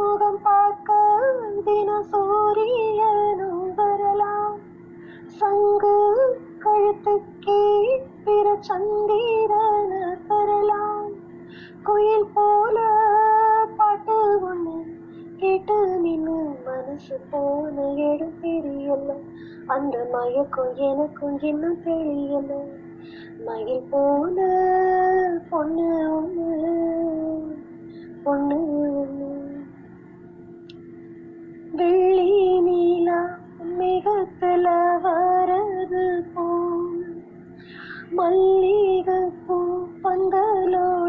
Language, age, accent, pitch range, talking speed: Tamil, 20-39, native, 335-420 Hz, 40 wpm